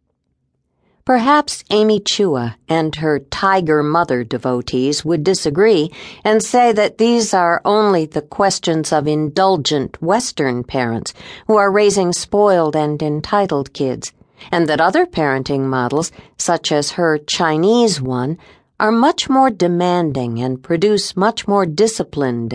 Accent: American